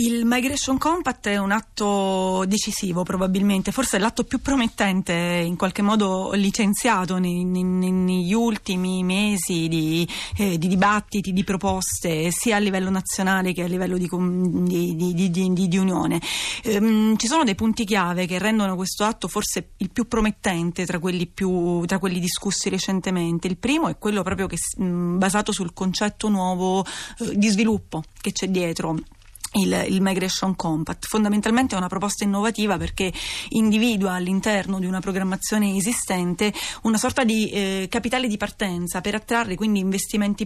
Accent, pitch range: native, 185-215 Hz